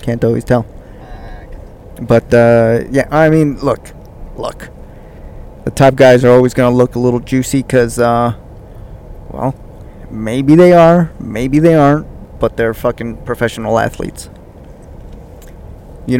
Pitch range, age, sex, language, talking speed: 110-130 Hz, 20-39, male, English, 135 wpm